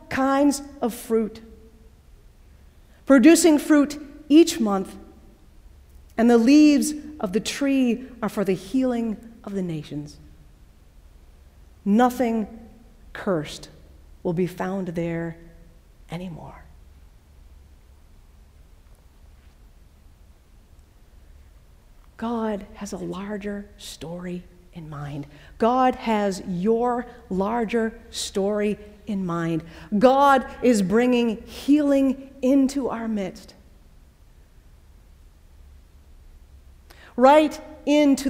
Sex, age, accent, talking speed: female, 40-59, American, 80 wpm